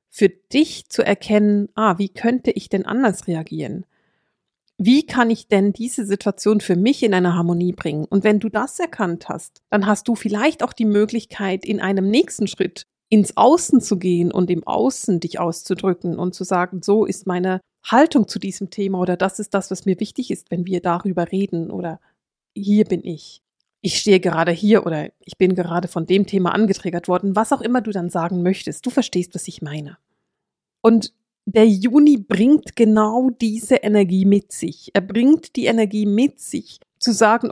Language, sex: German, female